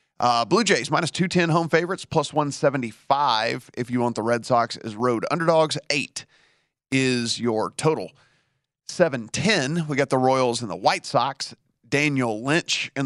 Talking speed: 155 wpm